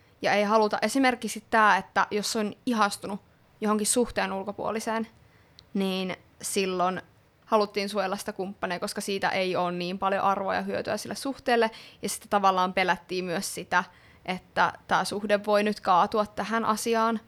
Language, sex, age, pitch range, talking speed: Finnish, female, 20-39, 195-220 Hz, 150 wpm